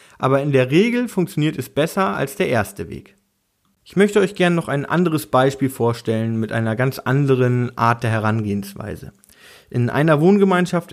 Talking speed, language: 165 wpm, German